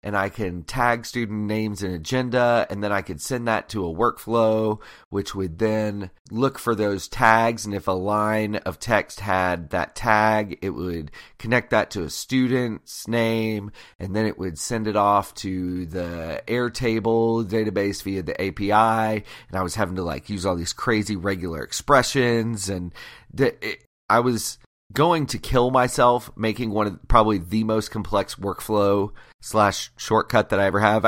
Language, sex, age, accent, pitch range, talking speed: English, male, 30-49, American, 95-120 Hz, 170 wpm